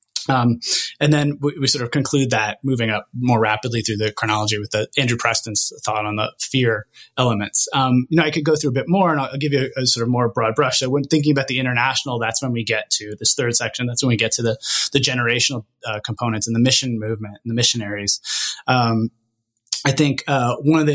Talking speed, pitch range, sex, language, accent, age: 240 wpm, 115-140 Hz, male, English, American, 20-39